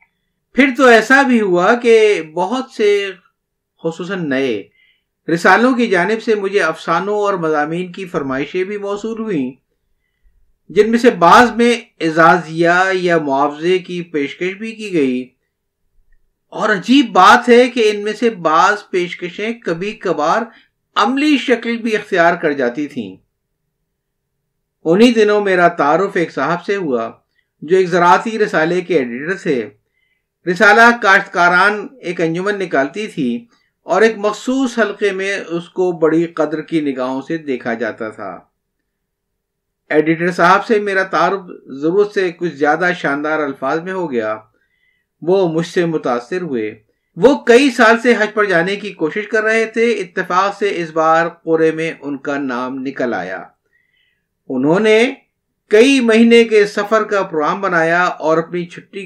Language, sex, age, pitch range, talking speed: Urdu, male, 50-69, 160-215 Hz, 145 wpm